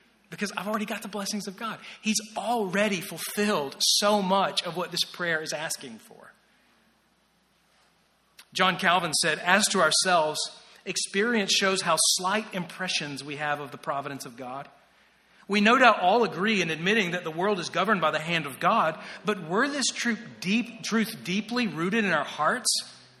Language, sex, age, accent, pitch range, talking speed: English, male, 40-59, American, 165-205 Hz, 170 wpm